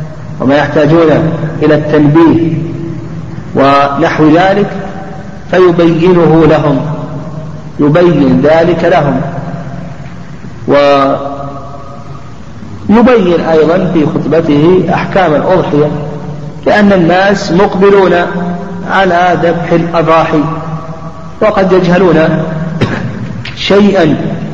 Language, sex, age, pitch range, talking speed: Arabic, male, 50-69, 140-170 Hz, 65 wpm